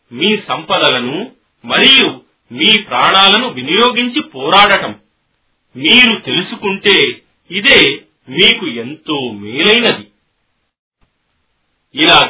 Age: 40-59